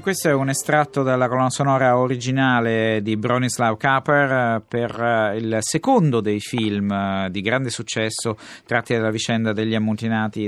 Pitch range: 105-125 Hz